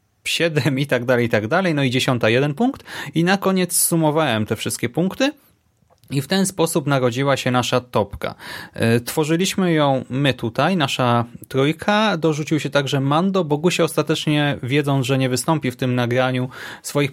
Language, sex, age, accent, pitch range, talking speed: Polish, male, 30-49, native, 125-160 Hz, 170 wpm